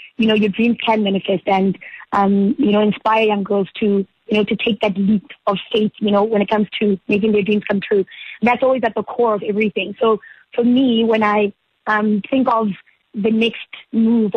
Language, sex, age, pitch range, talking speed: English, female, 20-39, 205-230 Hz, 215 wpm